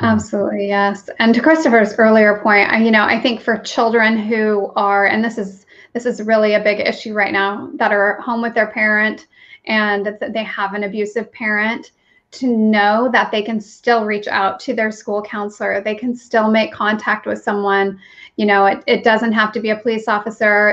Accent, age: American, 30-49